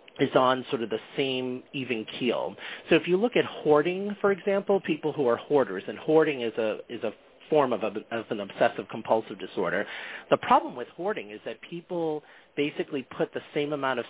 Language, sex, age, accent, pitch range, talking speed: English, male, 40-59, American, 115-155 Hz, 200 wpm